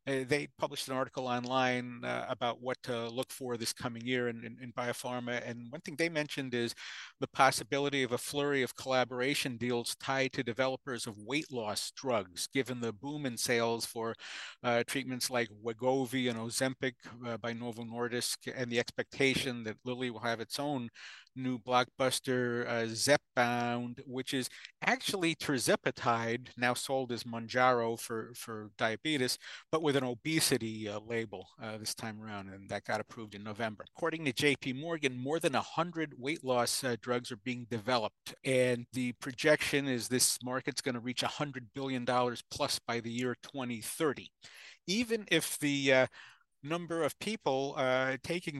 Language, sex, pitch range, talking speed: English, male, 120-145 Hz, 170 wpm